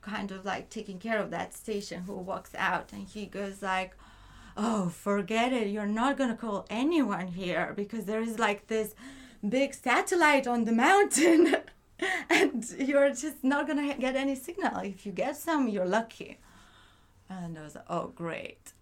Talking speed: 175 wpm